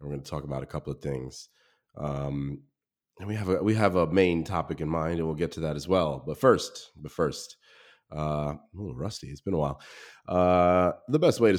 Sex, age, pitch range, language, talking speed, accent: male, 30-49, 70-85 Hz, English, 240 wpm, American